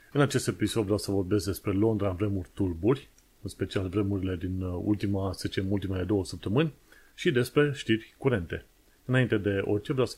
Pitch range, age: 100-125 Hz, 30-49